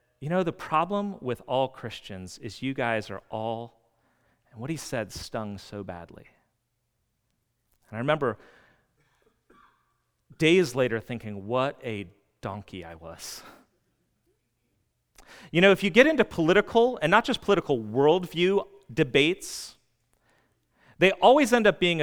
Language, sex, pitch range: English, male, 125-185 Hz